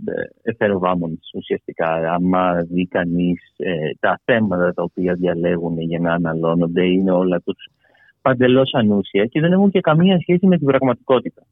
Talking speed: 140 wpm